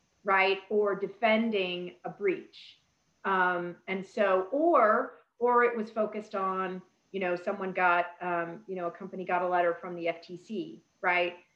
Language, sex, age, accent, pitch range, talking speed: English, female, 40-59, American, 185-225 Hz, 155 wpm